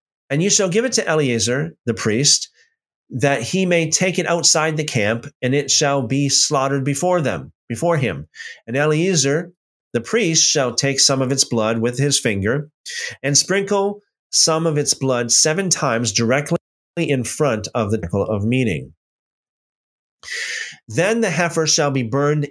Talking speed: 165 wpm